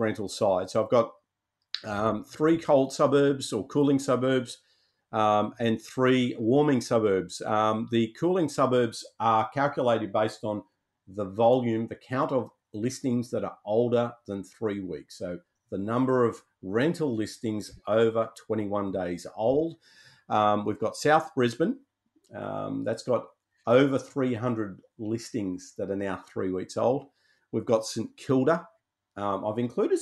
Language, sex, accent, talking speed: English, male, Australian, 140 wpm